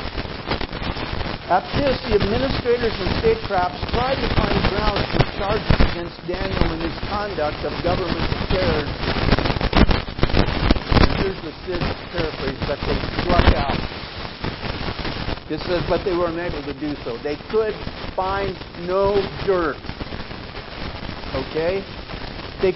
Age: 50-69